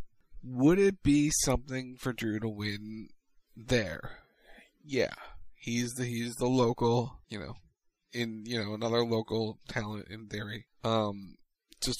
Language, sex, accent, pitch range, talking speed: English, male, American, 110-130 Hz, 135 wpm